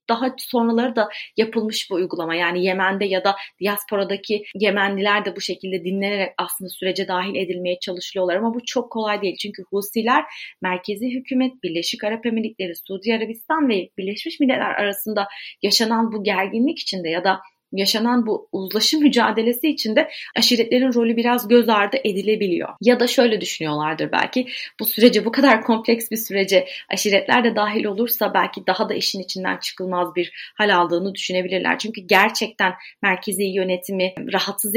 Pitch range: 185-230 Hz